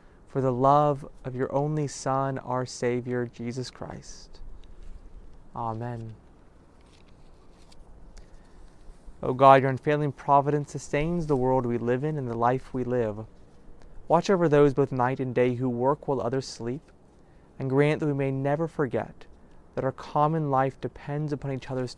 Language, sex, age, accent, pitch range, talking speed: English, male, 30-49, American, 105-145 Hz, 150 wpm